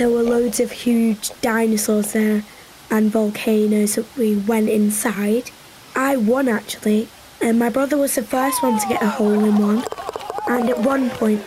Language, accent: English, British